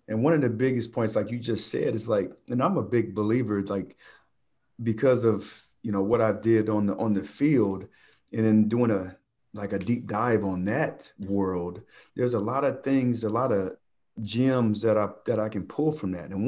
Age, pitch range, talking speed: 40-59, 100-115 Hz, 215 wpm